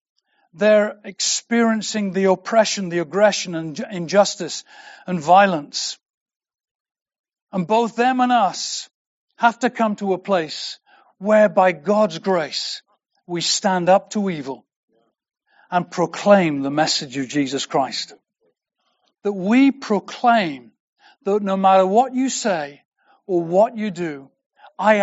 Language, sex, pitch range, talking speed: English, male, 185-230 Hz, 120 wpm